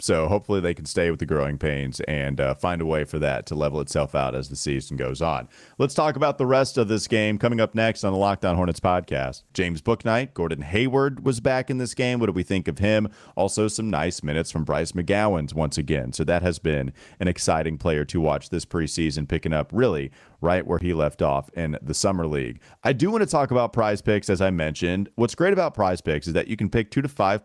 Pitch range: 85-115 Hz